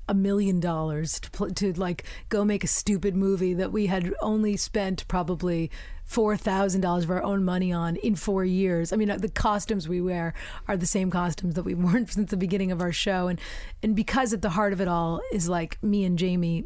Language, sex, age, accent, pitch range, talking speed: English, female, 30-49, American, 170-205 Hz, 225 wpm